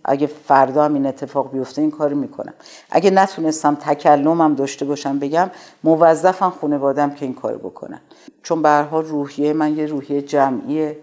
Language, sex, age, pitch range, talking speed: Persian, female, 50-69, 130-155 Hz, 150 wpm